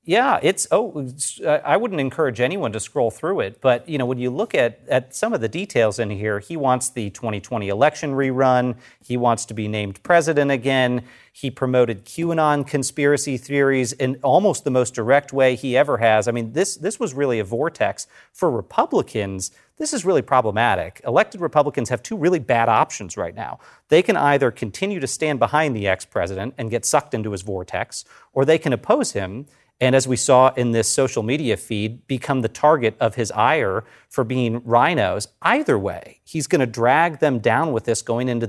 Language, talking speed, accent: English, 200 wpm, American